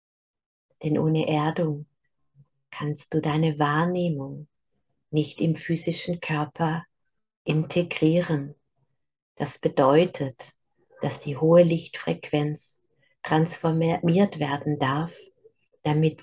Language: German